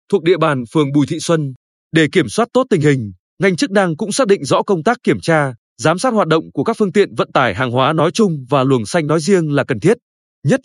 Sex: male